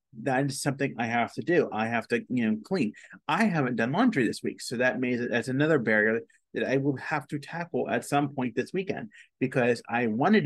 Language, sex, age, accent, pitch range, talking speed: English, male, 30-49, American, 115-145 Hz, 225 wpm